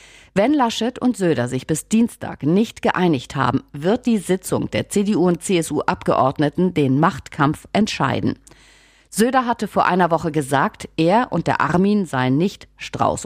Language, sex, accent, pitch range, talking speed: German, female, German, 140-200 Hz, 150 wpm